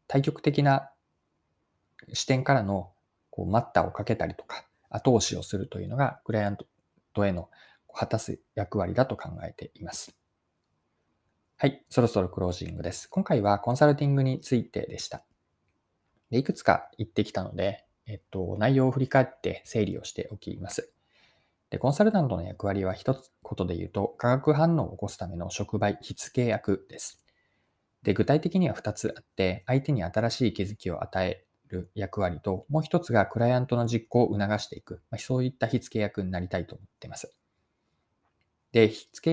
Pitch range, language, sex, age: 95-130 Hz, Japanese, male, 20-39